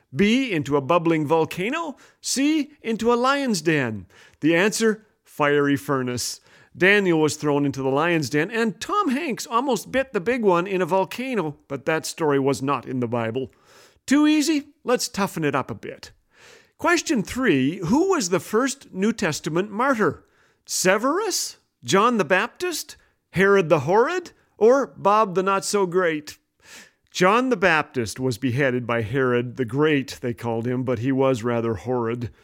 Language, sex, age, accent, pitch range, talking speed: English, male, 40-59, American, 135-230 Hz, 155 wpm